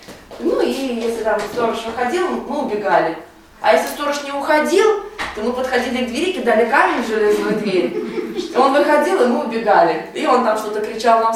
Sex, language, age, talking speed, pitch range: female, Russian, 20-39, 180 wpm, 200-265 Hz